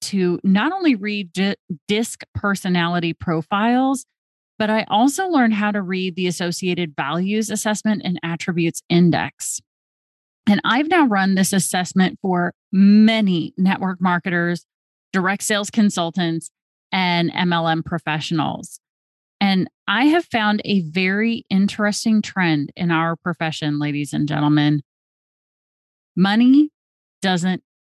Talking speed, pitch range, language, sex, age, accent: 115 wpm, 165-210 Hz, English, female, 30-49, American